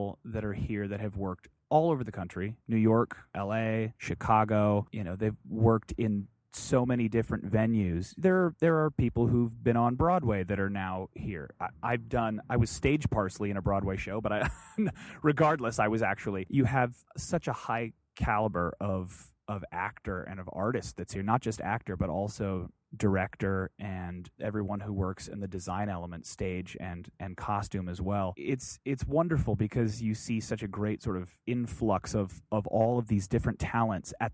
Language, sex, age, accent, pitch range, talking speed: English, male, 20-39, American, 95-120 Hz, 185 wpm